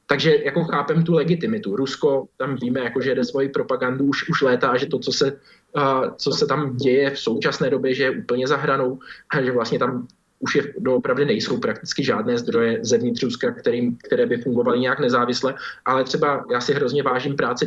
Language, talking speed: Slovak, 190 wpm